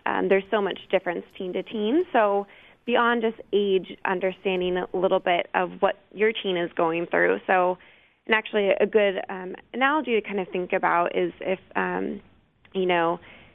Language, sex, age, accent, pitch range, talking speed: English, female, 20-39, American, 180-220 Hz, 175 wpm